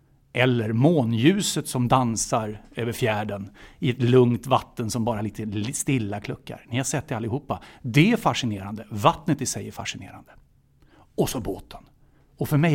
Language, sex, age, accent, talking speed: English, male, 60-79, Swedish, 160 wpm